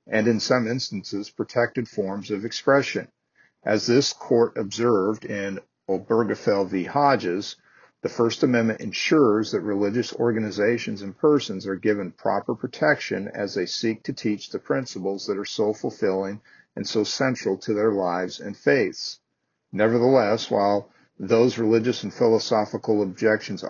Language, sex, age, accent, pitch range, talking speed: English, male, 50-69, American, 100-120 Hz, 140 wpm